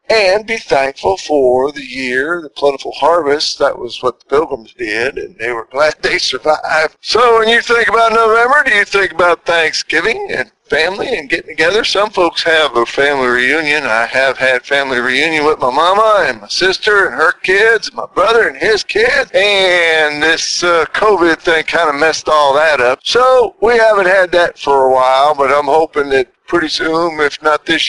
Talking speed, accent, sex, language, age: 195 wpm, American, male, English, 50-69